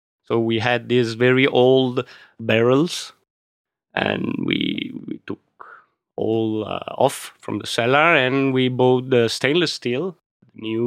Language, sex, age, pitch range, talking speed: English, male, 30-49, 110-130 Hz, 140 wpm